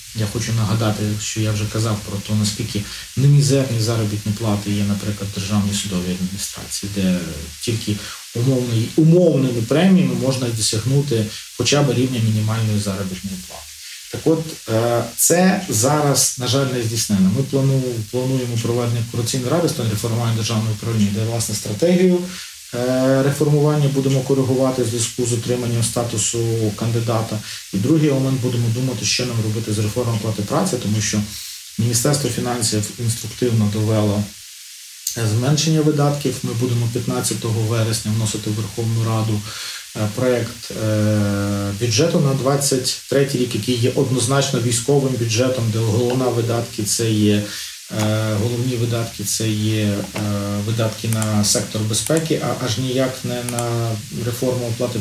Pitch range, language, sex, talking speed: 110-130 Hz, Ukrainian, male, 130 wpm